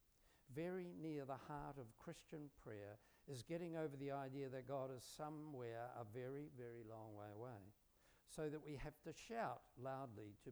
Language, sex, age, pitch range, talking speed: English, male, 60-79, 105-145 Hz, 170 wpm